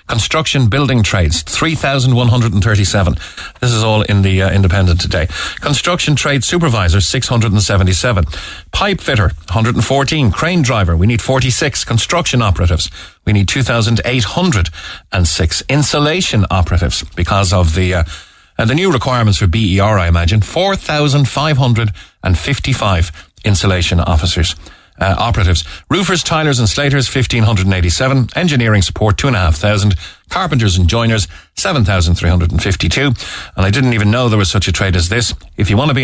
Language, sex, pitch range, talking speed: English, male, 90-125 Hz, 140 wpm